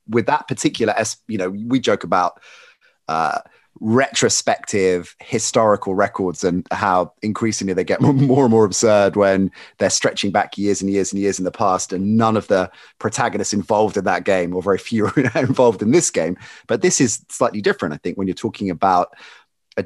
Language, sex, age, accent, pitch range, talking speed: English, male, 30-49, British, 95-115 Hz, 185 wpm